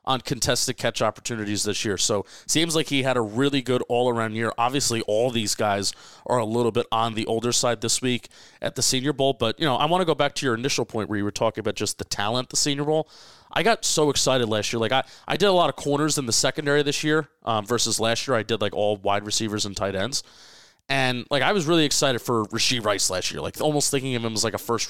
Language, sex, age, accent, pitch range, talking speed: English, male, 30-49, American, 115-140 Hz, 265 wpm